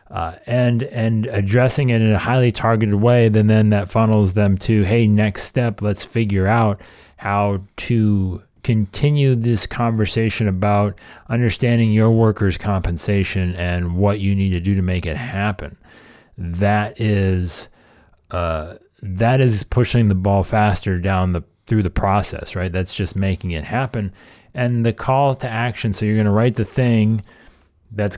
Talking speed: 160 wpm